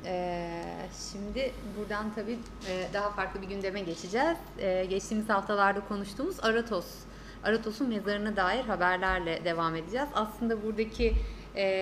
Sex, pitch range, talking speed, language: female, 195-240 Hz, 100 wpm, Turkish